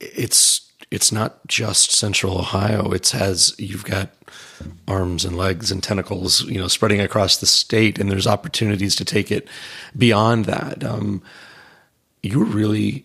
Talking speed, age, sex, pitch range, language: 145 wpm, 30-49, male, 95-115 Hz, English